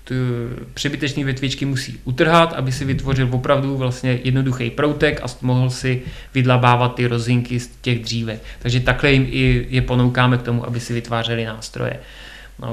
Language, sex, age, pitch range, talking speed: Czech, male, 20-39, 120-130 Hz, 155 wpm